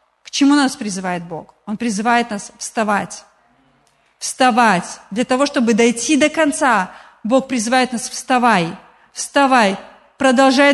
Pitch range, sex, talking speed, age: 220-280 Hz, female, 125 wpm, 30-49